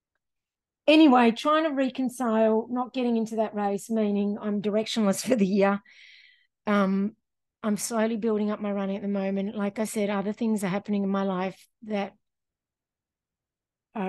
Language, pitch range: English, 200-240 Hz